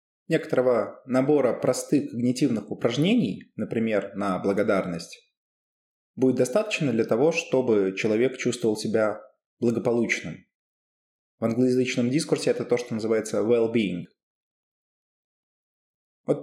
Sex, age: male, 20-39